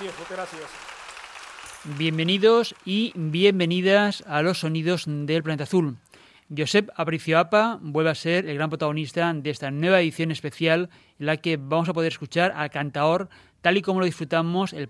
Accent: Spanish